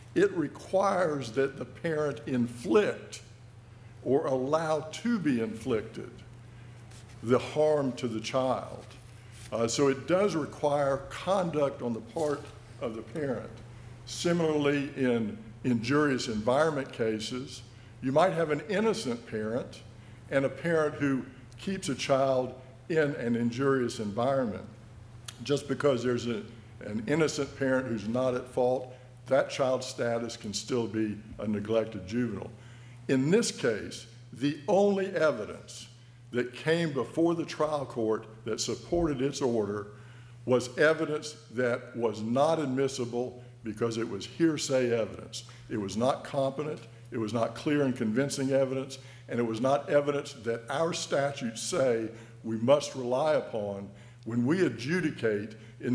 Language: English